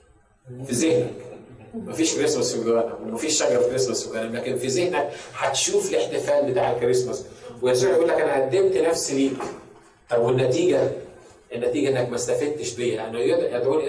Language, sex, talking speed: Arabic, male, 145 wpm